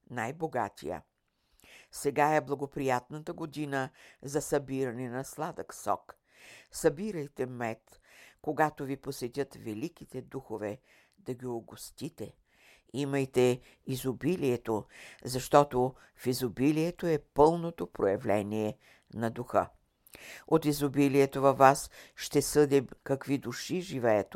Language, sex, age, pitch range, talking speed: Bulgarian, female, 60-79, 125-150 Hz, 95 wpm